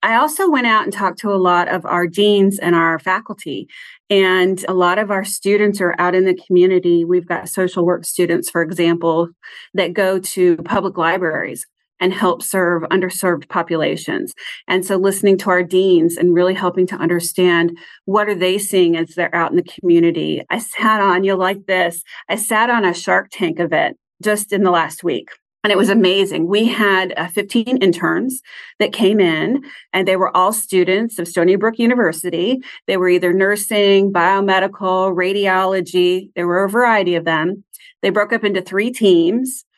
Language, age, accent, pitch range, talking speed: English, 40-59, American, 180-205 Hz, 185 wpm